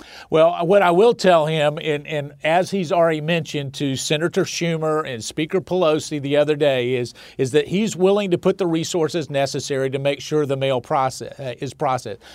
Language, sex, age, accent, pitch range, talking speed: English, male, 50-69, American, 165-220 Hz, 195 wpm